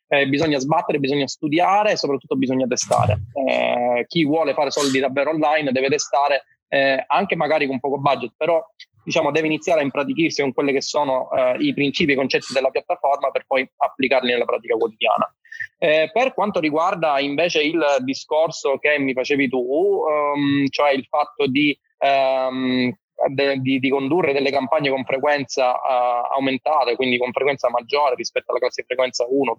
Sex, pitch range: male, 130-160 Hz